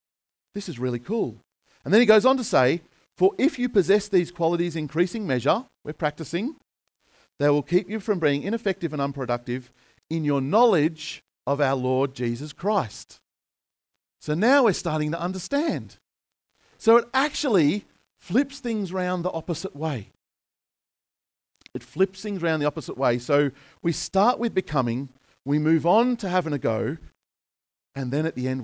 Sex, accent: male, Australian